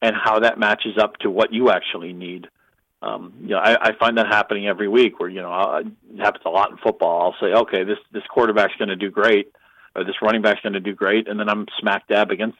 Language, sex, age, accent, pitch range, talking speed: English, male, 50-69, American, 105-130 Hz, 250 wpm